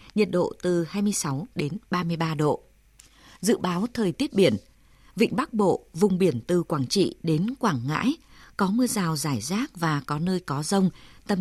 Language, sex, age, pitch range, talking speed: Vietnamese, female, 20-39, 165-215 Hz, 180 wpm